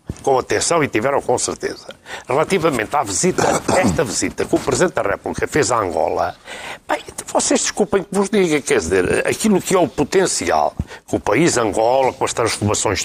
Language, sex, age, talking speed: Portuguese, male, 60-79, 180 wpm